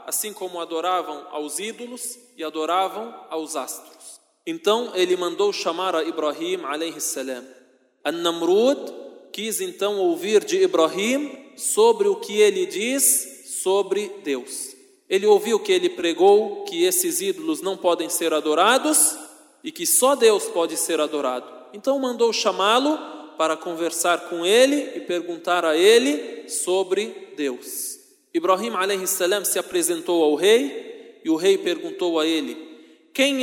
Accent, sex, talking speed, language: Brazilian, male, 135 wpm, Portuguese